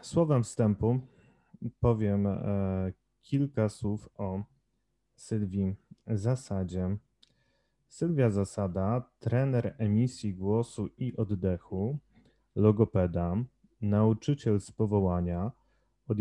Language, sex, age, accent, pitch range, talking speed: Polish, male, 30-49, native, 100-120 Hz, 75 wpm